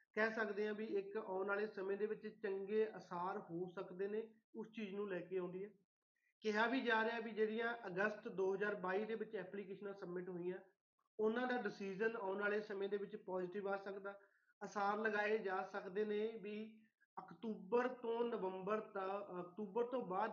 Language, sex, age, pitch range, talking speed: Punjabi, male, 30-49, 200-230 Hz, 175 wpm